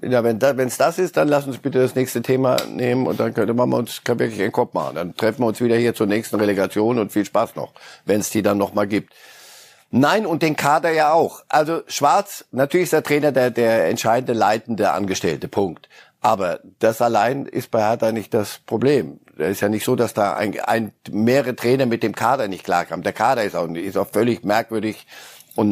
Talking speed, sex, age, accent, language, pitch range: 220 wpm, male, 50-69, German, German, 110-140 Hz